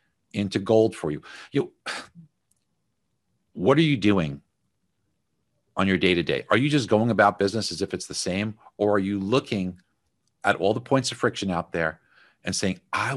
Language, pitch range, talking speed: English, 95-125 Hz, 175 wpm